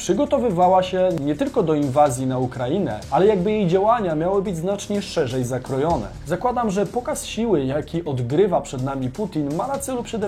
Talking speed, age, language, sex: 175 wpm, 30-49, Polish, male